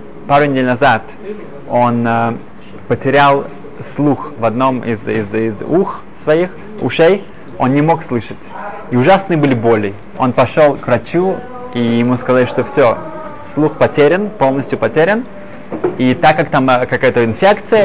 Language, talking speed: Russian, 140 wpm